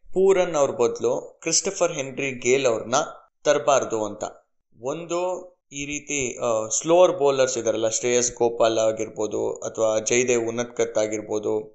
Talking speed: 110 wpm